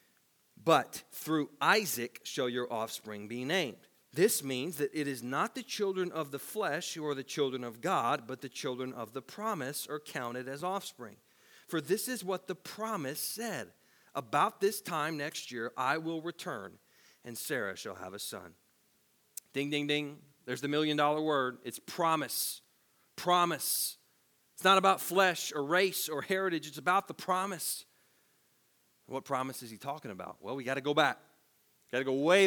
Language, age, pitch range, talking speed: English, 40-59, 130-175 Hz, 175 wpm